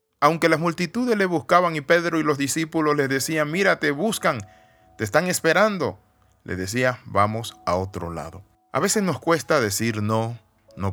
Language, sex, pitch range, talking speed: Spanish, male, 100-140 Hz, 170 wpm